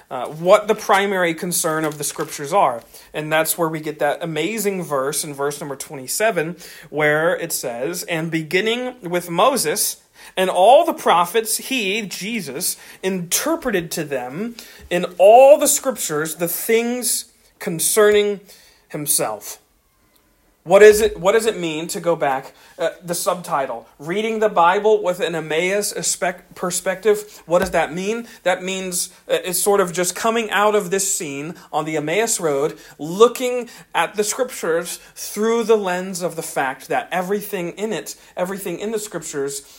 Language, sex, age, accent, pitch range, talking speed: English, male, 40-59, American, 160-210 Hz, 155 wpm